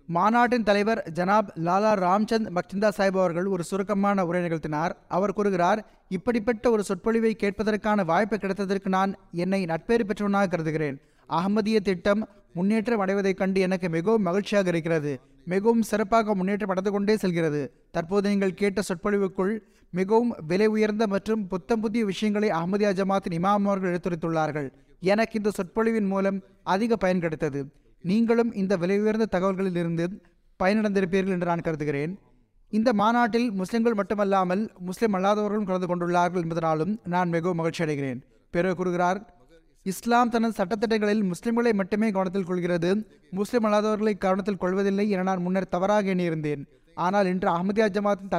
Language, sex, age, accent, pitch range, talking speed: Tamil, male, 20-39, native, 180-210 Hz, 130 wpm